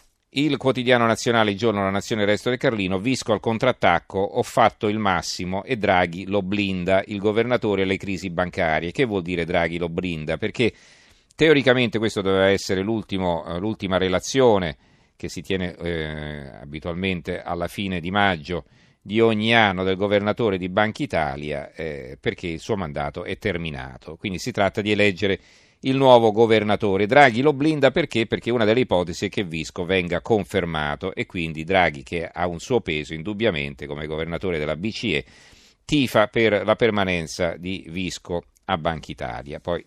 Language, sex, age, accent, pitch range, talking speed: Italian, male, 40-59, native, 90-115 Hz, 165 wpm